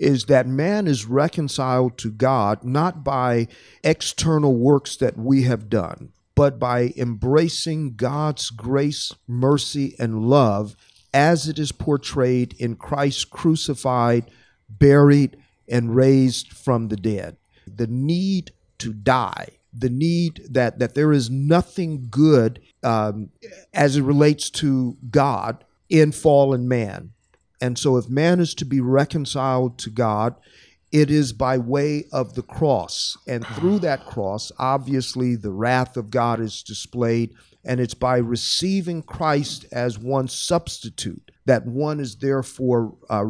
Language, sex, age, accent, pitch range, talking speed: English, male, 50-69, American, 115-145 Hz, 135 wpm